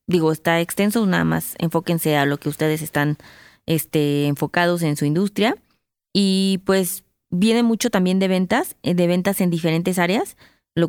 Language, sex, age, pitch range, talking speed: Spanish, female, 20-39, 170-205 Hz, 160 wpm